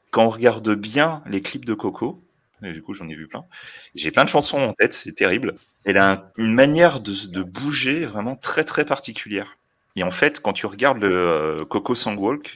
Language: French